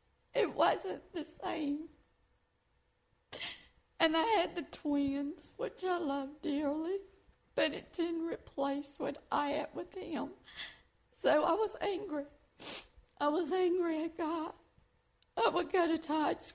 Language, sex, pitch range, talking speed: English, female, 290-350 Hz, 130 wpm